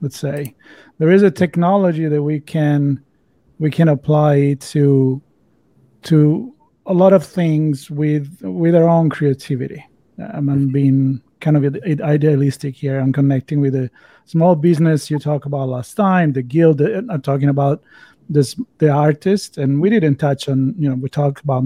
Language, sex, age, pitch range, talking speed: English, male, 40-59, 145-180 Hz, 165 wpm